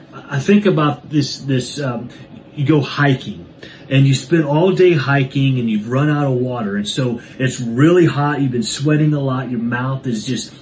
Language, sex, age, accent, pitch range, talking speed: English, male, 30-49, American, 120-150 Hz, 200 wpm